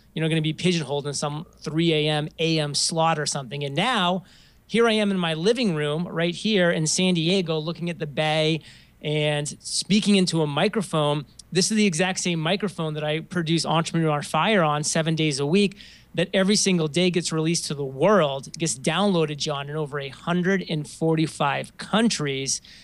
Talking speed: 185 wpm